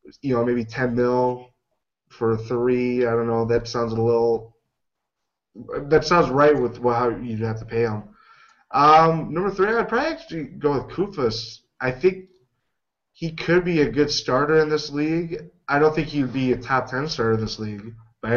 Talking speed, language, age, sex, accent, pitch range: 190 wpm, English, 20-39, male, American, 115-150 Hz